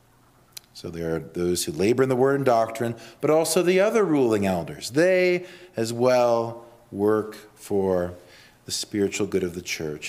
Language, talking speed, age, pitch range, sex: English, 165 wpm, 40-59, 95-150 Hz, male